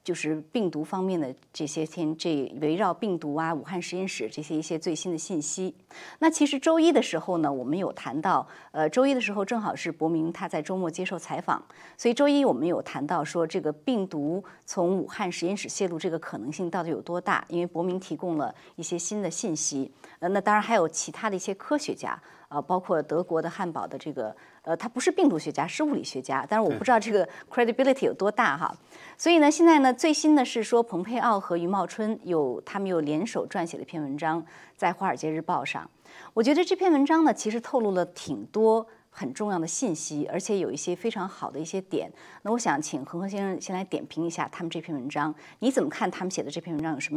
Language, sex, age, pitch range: Chinese, female, 30-49, 160-220 Hz